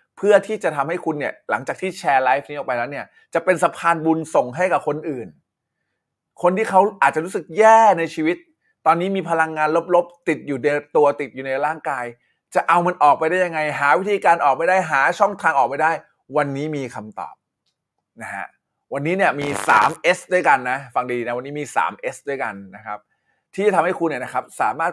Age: 20-39